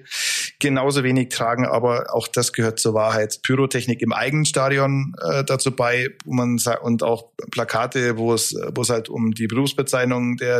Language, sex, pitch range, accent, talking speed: German, male, 120-135 Hz, German, 175 wpm